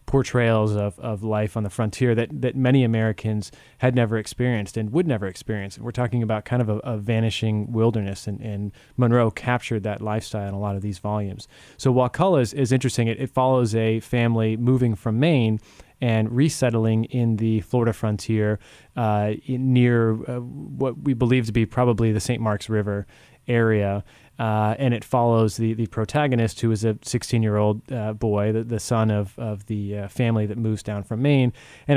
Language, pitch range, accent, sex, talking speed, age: English, 110-125 Hz, American, male, 195 wpm, 20-39